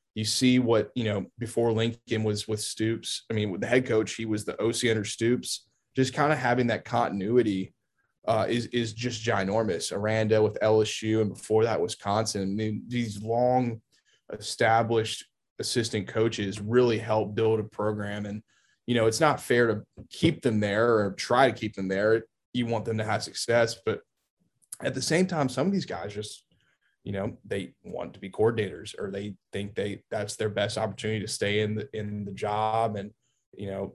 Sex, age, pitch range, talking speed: male, 20-39, 105-120 Hz, 195 wpm